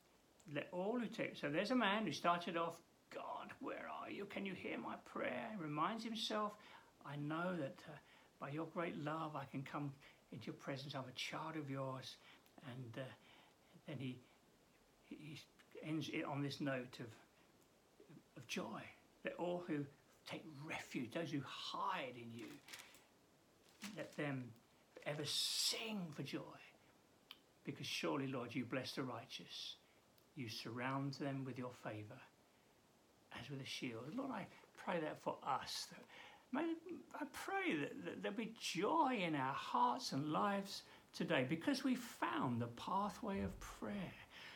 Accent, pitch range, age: British, 135-220 Hz, 60-79